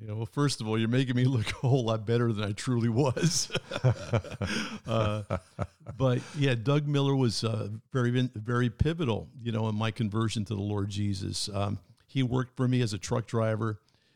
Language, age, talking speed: English, 50-69, 195 wpm